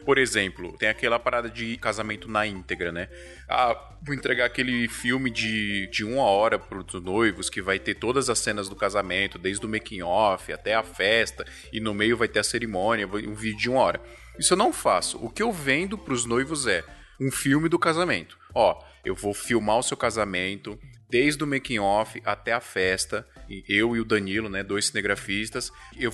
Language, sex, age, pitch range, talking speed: Portuguese, male, 20-39, 110-145 Hz, 195 wpm